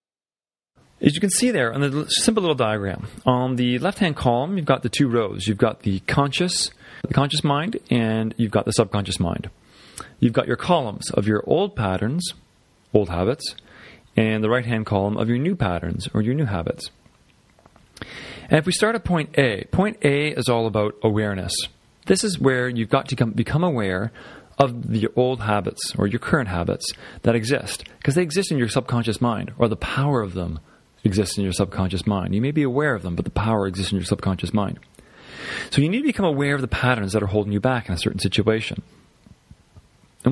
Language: English